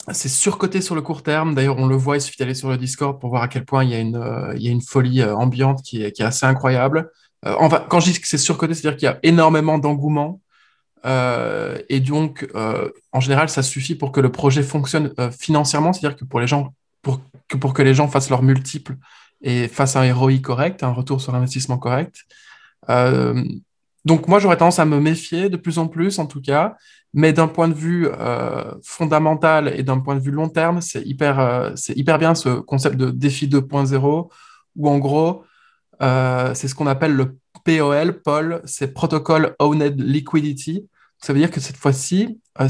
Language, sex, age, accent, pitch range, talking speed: French, male, 20-39, French, 135-160 Hz, 215 wpm